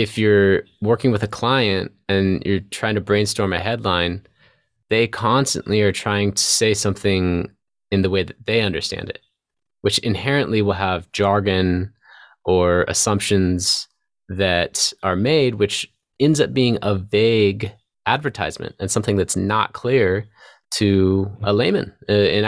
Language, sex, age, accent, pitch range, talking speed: English, male, 20-39, American, 95-110 Hz, 140 wpm